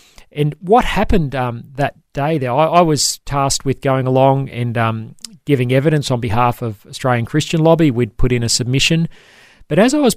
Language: English